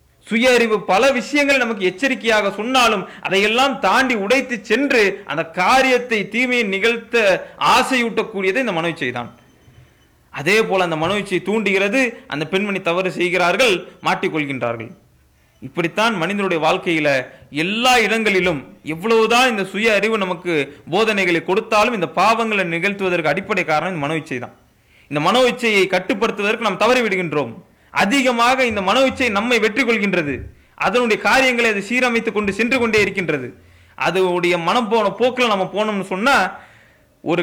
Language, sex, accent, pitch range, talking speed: English, male, Indian, 170-235 Hz, 120 wpm